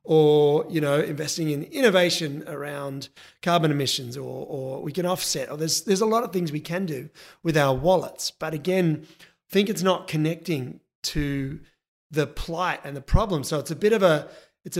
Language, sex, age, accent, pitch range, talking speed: English, male, 30-49, Australian, 150-185 Hz, 185 wpm